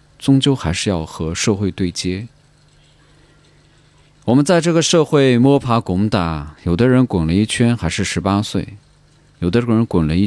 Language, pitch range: Chinese, 95-150 Hz